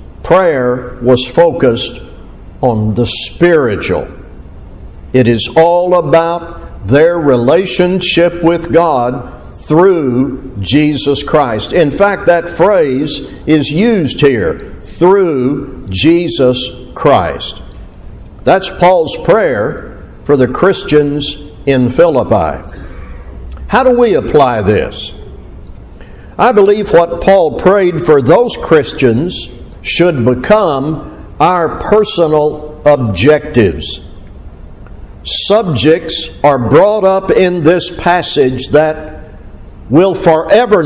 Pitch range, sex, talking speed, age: 115-175 Hz, male, 95 wpm, 60-79